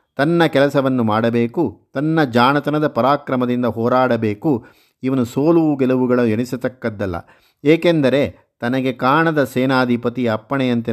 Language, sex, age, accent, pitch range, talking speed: Kannada, male, 50-69, native, 120-140 Hz, 90 wpm